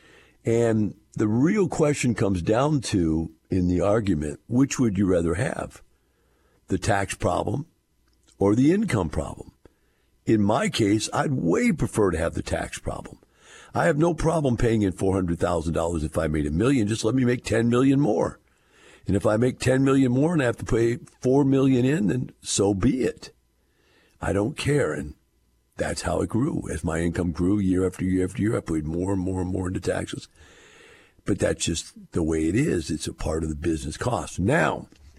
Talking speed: 190 wpm